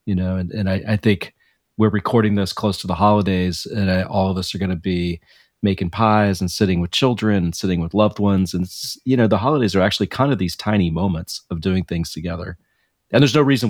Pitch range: 90-110 Hz